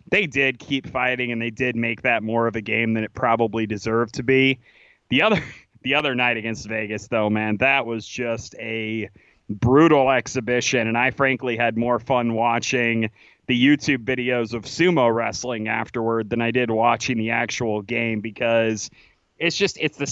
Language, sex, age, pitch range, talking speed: English, male, 30-49, 115-140 Hz, 180 wpm